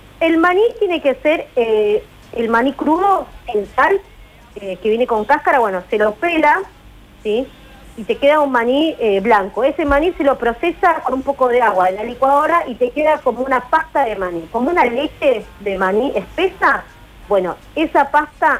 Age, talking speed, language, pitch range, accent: 40-59, 180 wpm, Spanish, 215-285 Hz, Argentinian